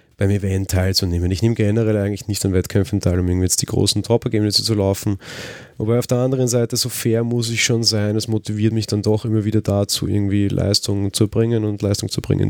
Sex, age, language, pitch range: male, 30-49, German, 100-115 Hz